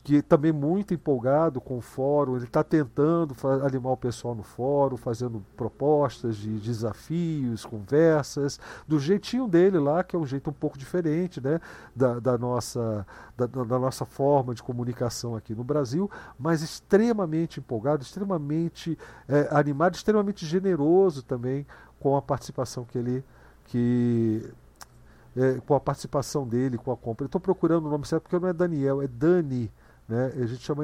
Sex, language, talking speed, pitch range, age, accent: male, Portuguese, 160 wpm, 125-165 Hz, 50-69, Brazilian